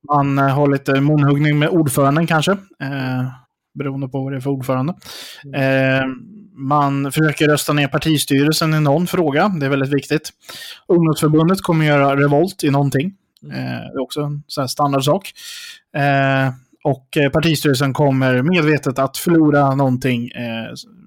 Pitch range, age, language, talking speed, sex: 135-155 Hz, 20-39, Swedish, 150 wpm, male